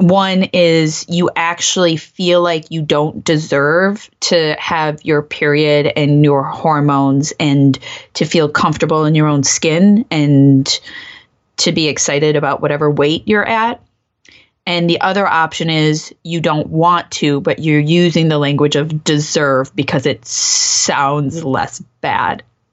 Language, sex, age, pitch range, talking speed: English, female, 20-39, 150-175 Hz, 145 wpm